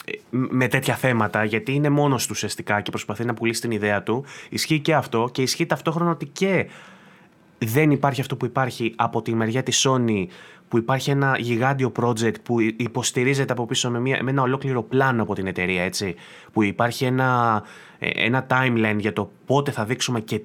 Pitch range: 110-145 Hz